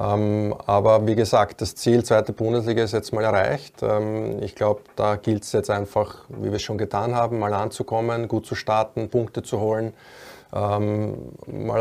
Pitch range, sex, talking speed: 100-115 Hz, male, 170 wpm